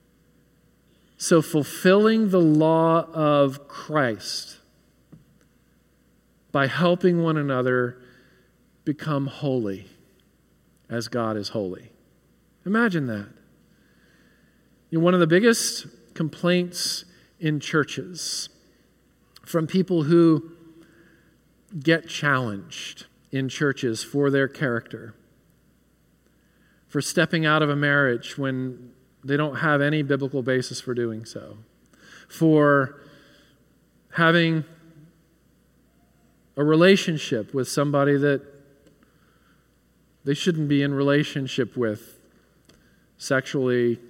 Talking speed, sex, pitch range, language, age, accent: 90 wpm, male, 130-165 Hz, English, 50-69, American